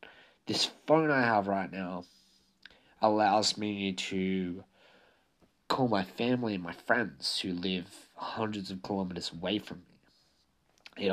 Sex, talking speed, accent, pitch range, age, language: male, 130 wpm, Australian, 95-110 Hz, 20-39, English